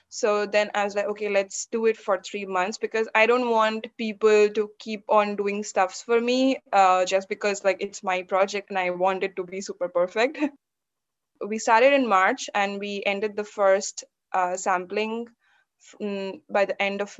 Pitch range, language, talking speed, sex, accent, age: 195-235 Hz, English, 190 wpm, female, Indian, 20-39